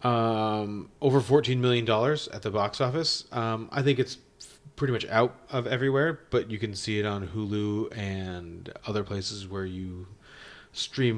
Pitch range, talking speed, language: 105-135 Hz, 165 wpm, English